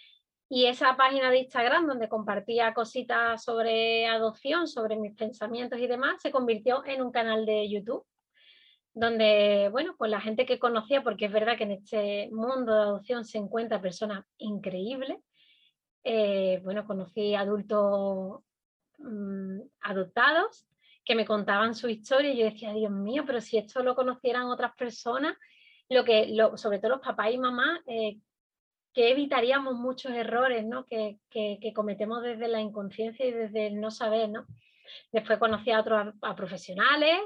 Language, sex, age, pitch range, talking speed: Spanish, female, 20-39, 215-255 Hz, 145 wpm